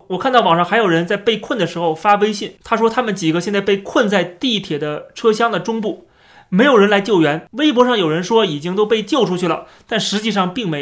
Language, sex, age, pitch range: Chinese, male, 30-49, 170-230 Hz